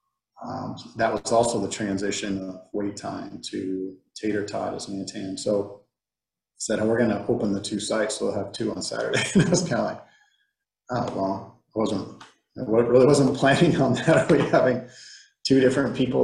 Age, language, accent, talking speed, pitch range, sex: 30-49, English, American, 190 wpm, 100-115 Hz, male